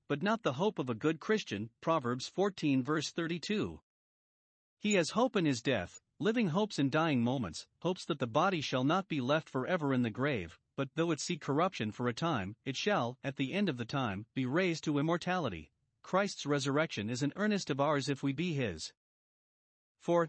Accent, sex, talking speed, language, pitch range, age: American, male, 200 wpm, English, 125-175 Hz, 50-69